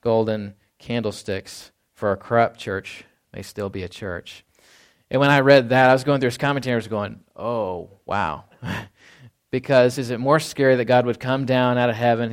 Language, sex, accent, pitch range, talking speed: English, male, American, 110-130 Hz, 185 wpm